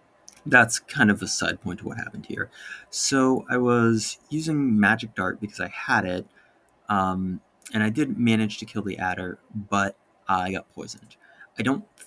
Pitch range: 95-125 Hz